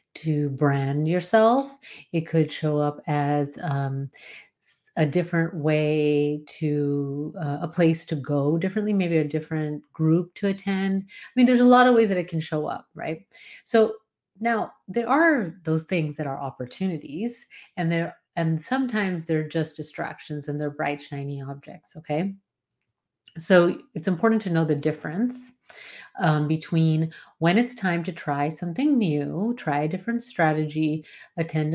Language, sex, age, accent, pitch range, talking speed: English, female, 30-49, American, 150-195 Hz, 155 wpm